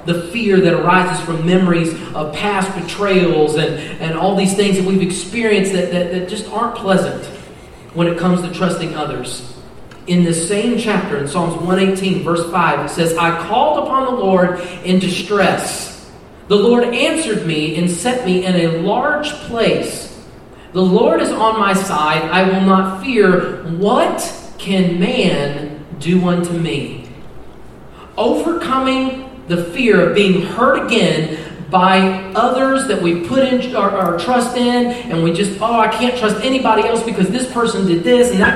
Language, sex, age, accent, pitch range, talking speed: English, male, 40-59, American, 175-230 Hz, 165 wpm